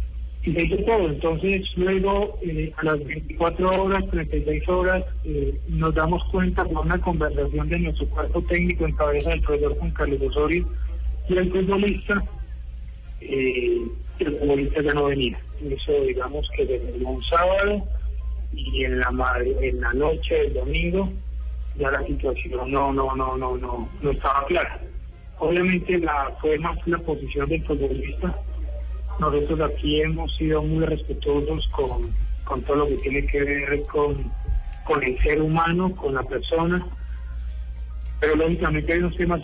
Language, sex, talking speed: Spanish, male, 155 wpm